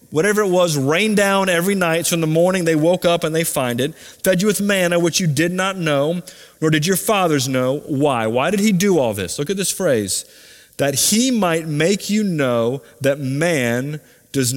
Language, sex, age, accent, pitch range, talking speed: English, male, 30-49, American, 135-190 Hz, 215 wpm